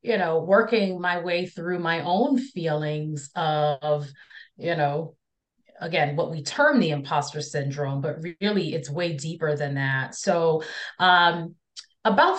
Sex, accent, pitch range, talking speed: female, American, 160-205 Hz, 140 wpm